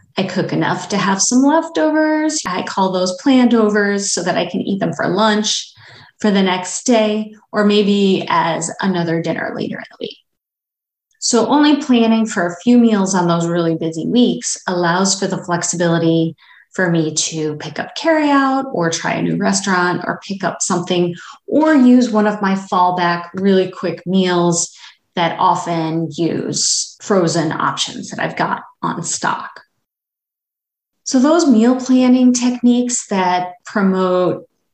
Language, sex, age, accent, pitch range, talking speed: English, female, 30-49, American, 175-225 Hz, 155 wpm